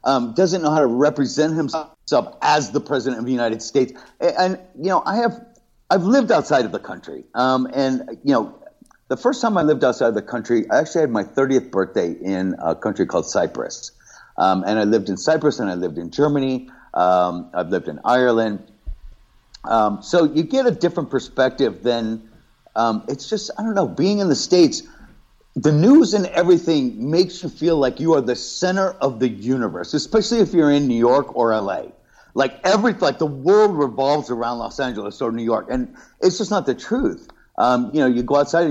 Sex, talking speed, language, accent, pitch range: male, 205 wpm, English, American, 120-185 Hz